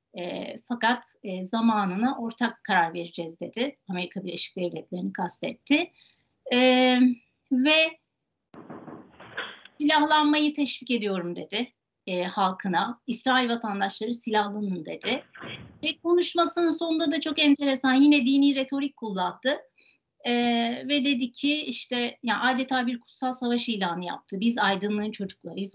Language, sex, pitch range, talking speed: Turkish, female, 200-275 Hz, 115 wpm